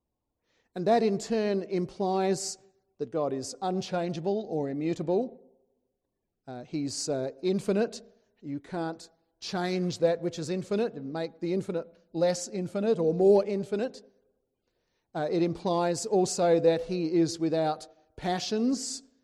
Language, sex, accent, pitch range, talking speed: English, male, Australian, 165-200 Hz, 125 wpm